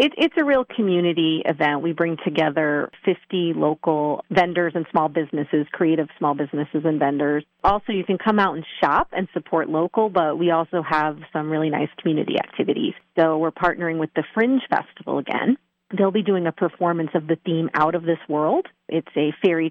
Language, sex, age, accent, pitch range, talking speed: English, female, 40-59, American, 150-180 Hz, 185 wpm